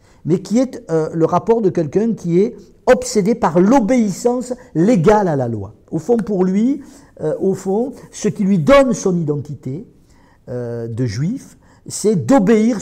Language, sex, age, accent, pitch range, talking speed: French, male, 50-69, French, 140-225 Hz, 165 wpm